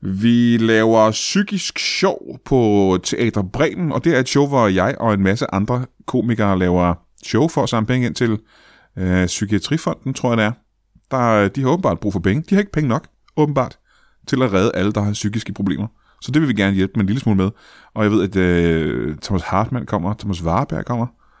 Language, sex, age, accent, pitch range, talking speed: Danish, male, 30-49, native, 100-130 Hz, 210 wpm